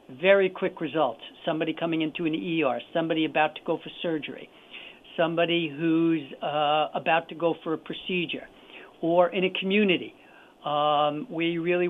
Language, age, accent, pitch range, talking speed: English, 60-79, American, 150-180 Hz, 150 wpm